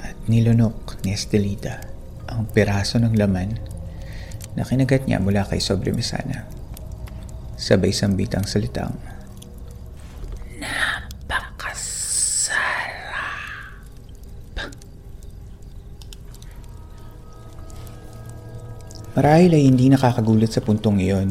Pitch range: 100-120 Hz